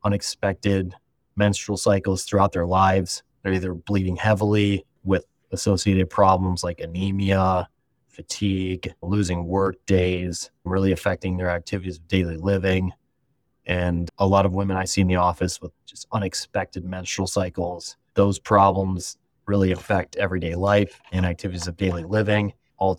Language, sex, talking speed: English, male, 140 wpm